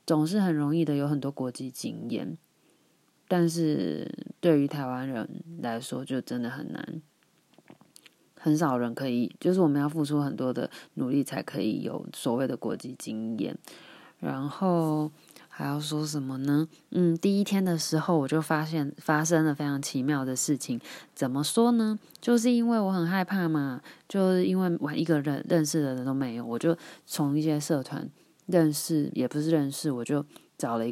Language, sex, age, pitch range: Chinese, female, 20-39, 140-170 Hz